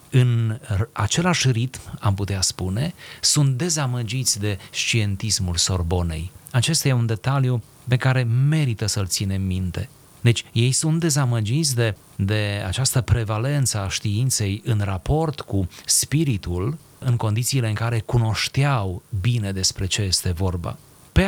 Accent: native